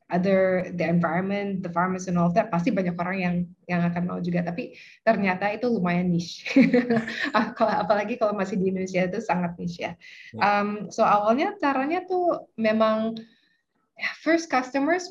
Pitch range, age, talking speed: 180-225 Hz, 20-39, 155 wpm